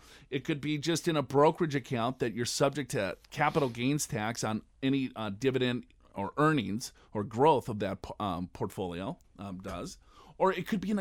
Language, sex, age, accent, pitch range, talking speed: English, male, 40-59, American, 130-180 Hz, 185 wpm